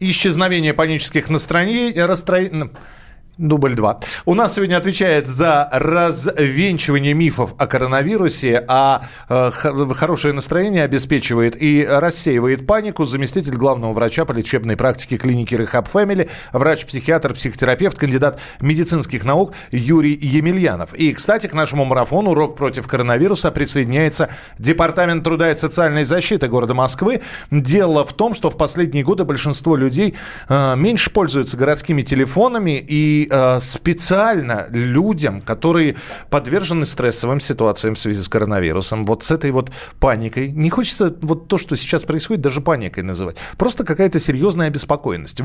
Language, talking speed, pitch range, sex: Russian, 130 wpm, 130-175 Hz, male